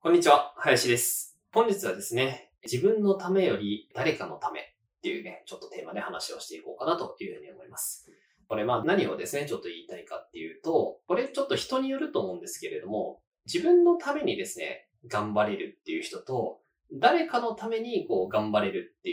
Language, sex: Japanese, male